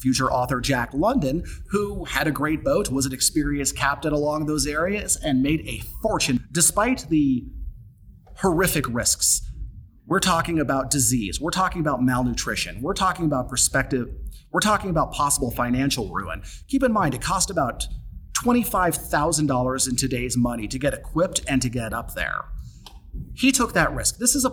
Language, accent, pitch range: English, American, 125-170 Hz